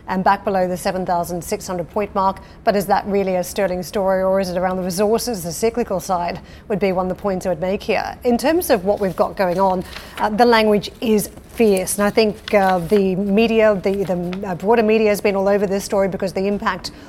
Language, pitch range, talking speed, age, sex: English, 185-210 Hz, 230 wpm, 40-59, female